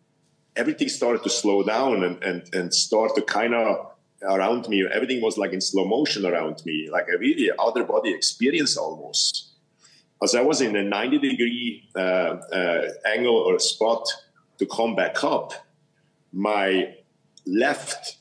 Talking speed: 155 wpm